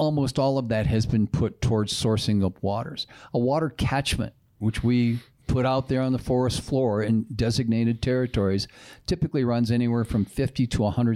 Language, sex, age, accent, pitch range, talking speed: English, male, 50-69, American, 110-135 Hz, 165 wpm